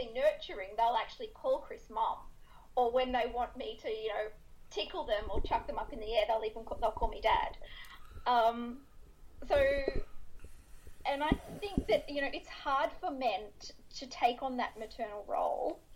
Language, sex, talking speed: English, female, 180 wpm